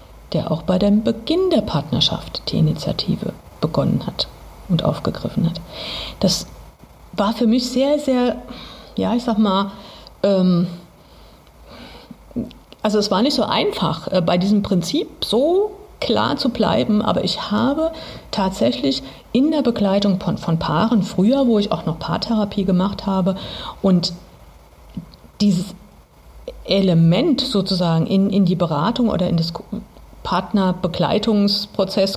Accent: German